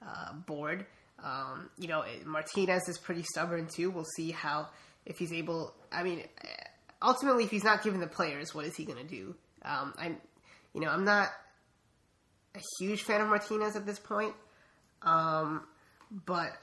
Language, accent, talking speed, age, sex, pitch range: English, American, 170 wpm, 20-39, female, 160-190 Hz